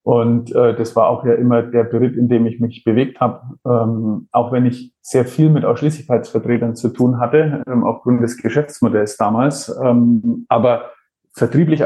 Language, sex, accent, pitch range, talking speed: German, male, German, 115-130 Hz, 170 wpm